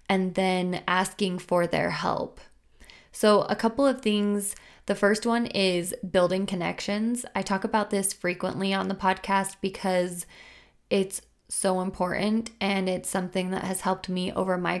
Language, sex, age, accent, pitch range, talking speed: English, female, 20-39, American, 180-205 Hz, 155 wpm